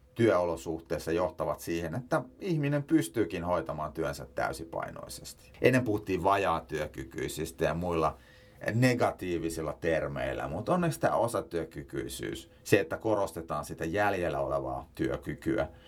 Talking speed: 105 wpm